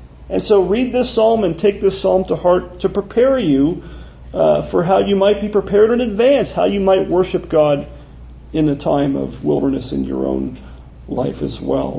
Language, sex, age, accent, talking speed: English, male, 40-59, American, 195 wpm